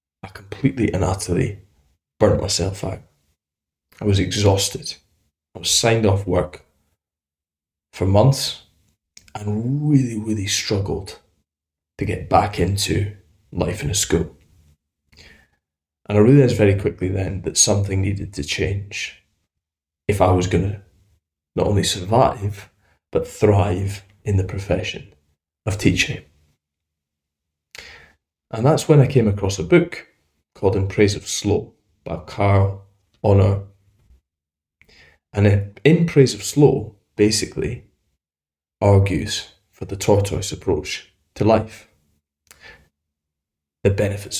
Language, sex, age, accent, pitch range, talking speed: English, male, 20-39, British, 75-105 Hz, 115 wpm